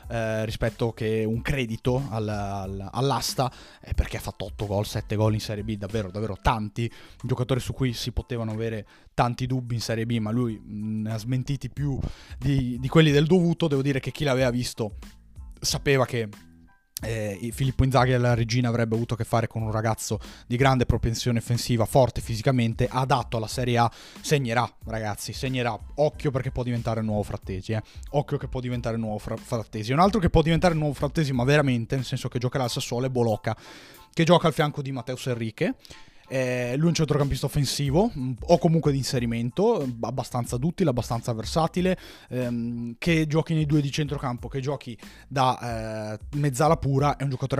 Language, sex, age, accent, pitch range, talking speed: Italian, male, 20-39, native, 115-140 Hz, 190 wpm